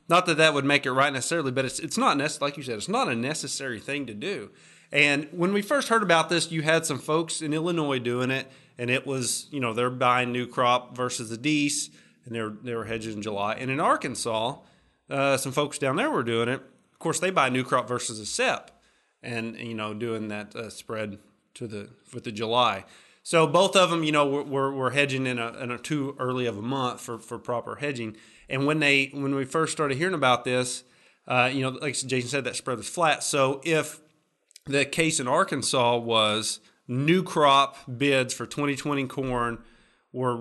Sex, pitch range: male, 120-145 Hz